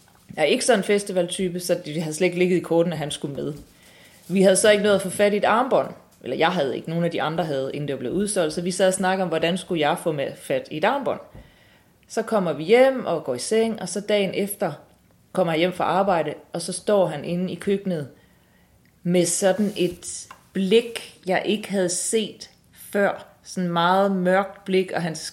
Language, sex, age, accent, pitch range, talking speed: Danish, female, 30-49, native, 155-195 Hz, 230 wpm